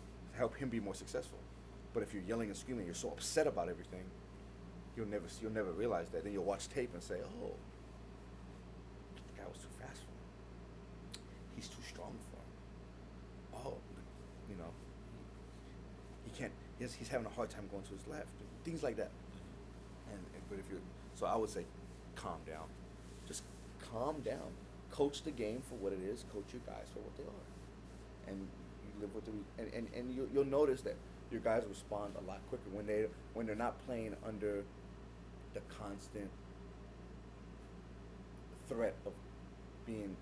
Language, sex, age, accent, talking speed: English, male, 30-49, American, 170 wpm